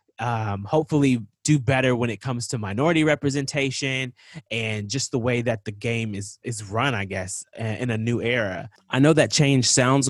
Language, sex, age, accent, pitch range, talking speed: English, male, 20-39, American, 110-135 Hz, 185 wpm